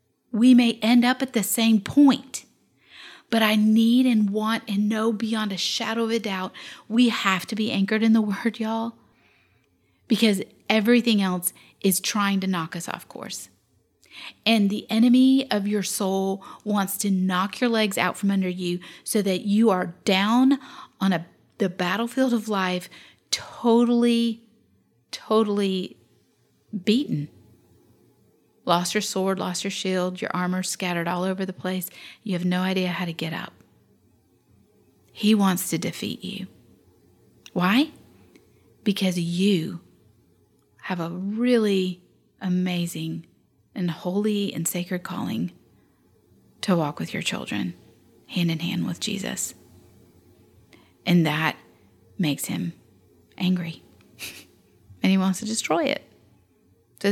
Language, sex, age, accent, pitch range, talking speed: English, female, 40-59, American, 180-225 Hz, 135 wpm